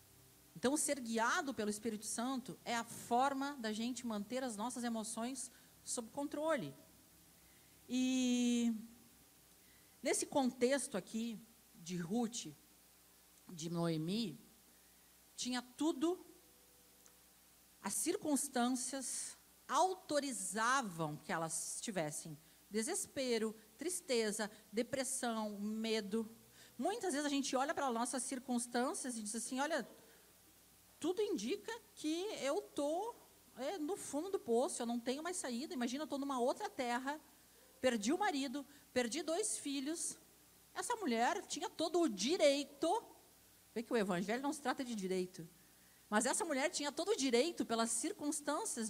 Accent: Brazilian